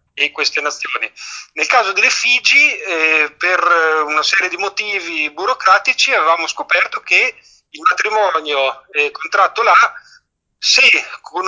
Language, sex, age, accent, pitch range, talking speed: Italian, male, 40-59, native, 150-190 Hz, 130 wpm